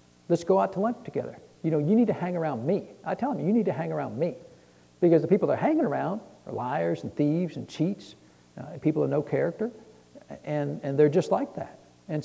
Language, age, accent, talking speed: English, 60-79, American, 240 wpm